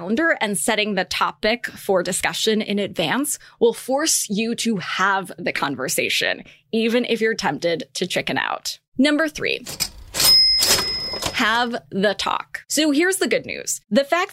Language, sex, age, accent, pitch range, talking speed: English, female, 20-39, American, 210-290 Hz, 140 wpm